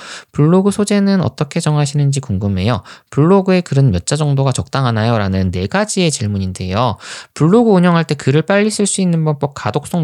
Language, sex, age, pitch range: Korean, male, 20-39, 100-160 Hz